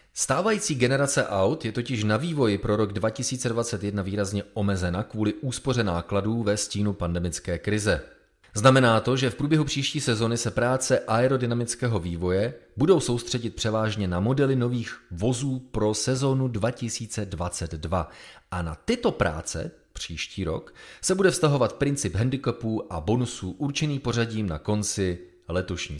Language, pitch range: Czech, 90-130 Hz